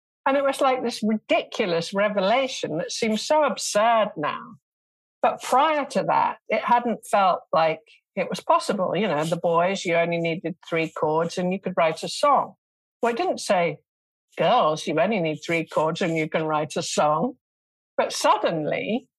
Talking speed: 175 wpm